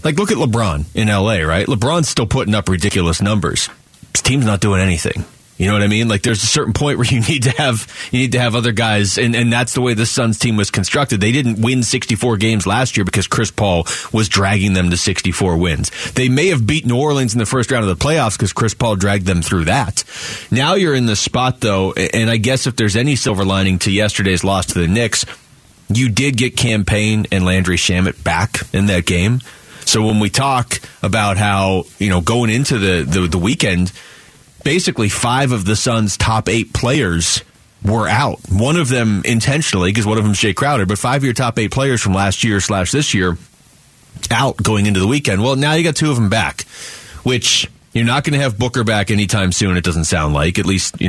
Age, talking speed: 30-49, 230 wpm